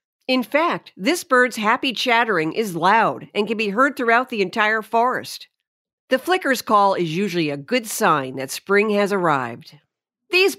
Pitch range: 185-265 Hz